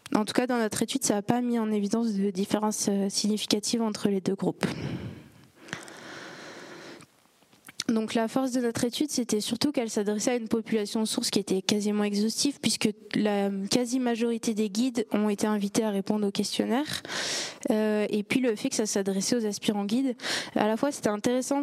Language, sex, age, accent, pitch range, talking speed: French, female, 20-39, French, 205-240 Hz, 180 wpm